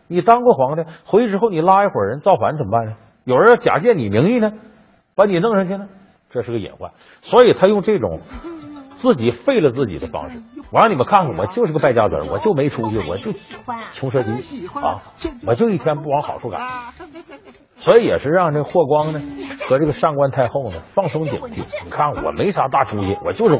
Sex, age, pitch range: male, 50-69, 150-235 Hz